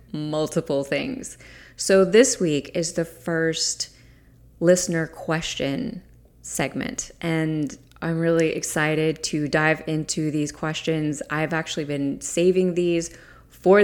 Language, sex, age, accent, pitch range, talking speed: English, female, 20-39, American, 155-180 Hz, 115 wpm